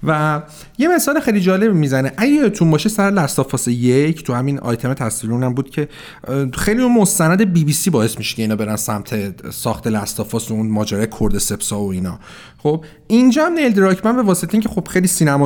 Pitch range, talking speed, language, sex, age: 135-205 Hz, 185 wpm, Persian, male, 40-59